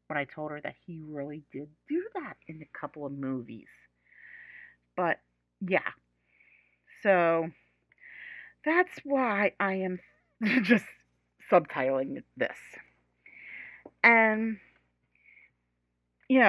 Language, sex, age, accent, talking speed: English, female, 40-59, American, 100 wpm